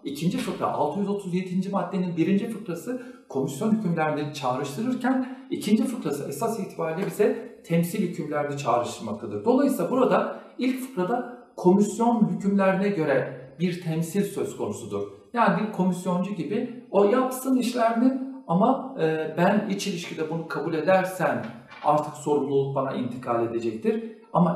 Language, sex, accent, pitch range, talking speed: Turkish, male, native, 150-220 Hz, 115 wpm